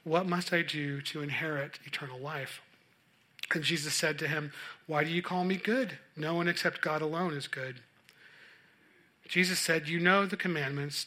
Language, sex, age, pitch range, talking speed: English, male, 40-59, 145-175 Hz, 175 wpm